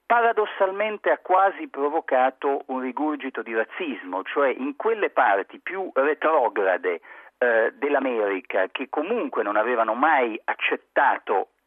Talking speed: 115 wpm